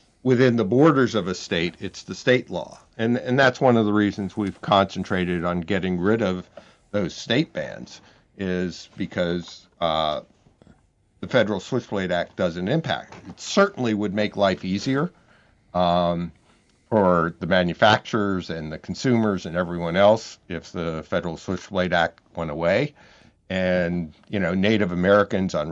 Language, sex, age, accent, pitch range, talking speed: English, male, 50-69, American, 90-110 Hz, 150 wpm